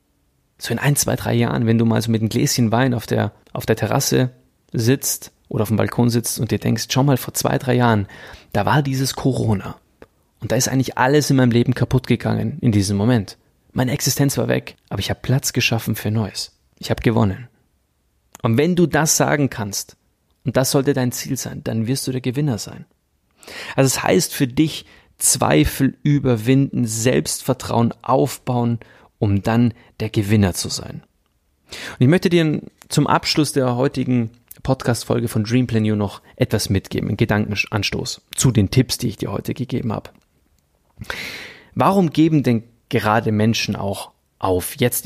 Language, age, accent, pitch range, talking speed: German, 30-49, German, 105-130 Hz, 180 wpm